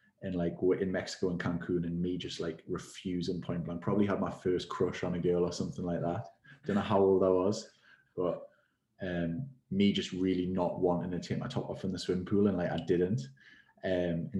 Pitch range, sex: 90-100 Hz, male